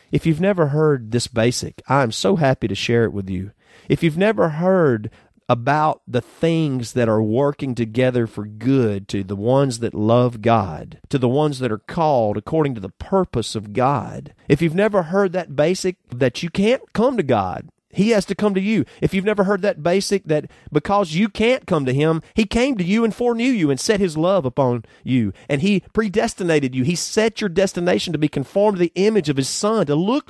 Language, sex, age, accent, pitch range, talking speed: English, male, 40-59, American, 115-165 Hz, 215 wpm